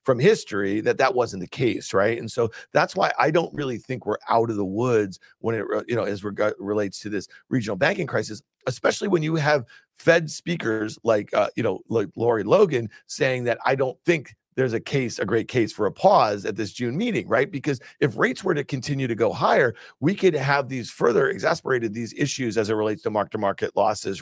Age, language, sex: 40-59, English, male